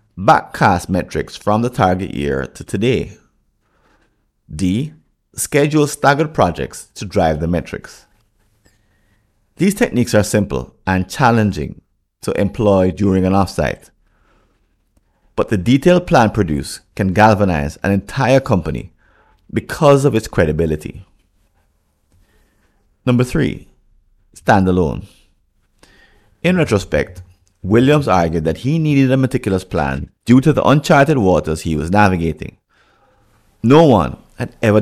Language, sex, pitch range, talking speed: English, male, 90-125 Hz, 115 wpm